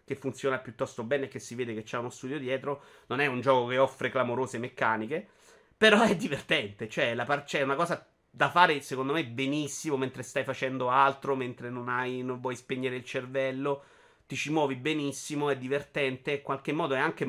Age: 30-49